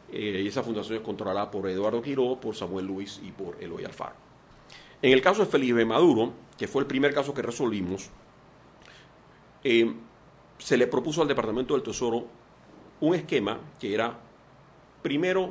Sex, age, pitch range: male, 40-59, 110-155 Hz